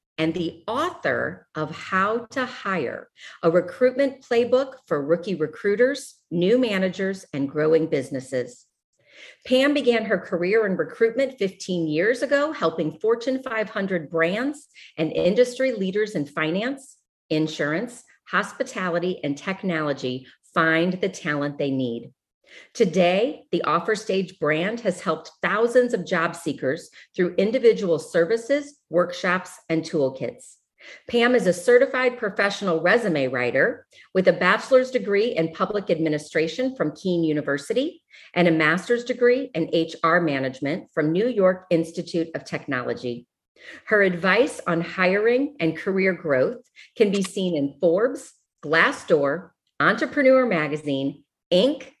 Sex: female